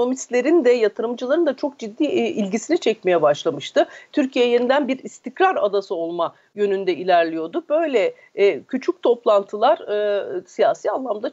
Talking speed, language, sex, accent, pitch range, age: 115 wpm, Turkish, female, native, 195-295 Hz, 40-59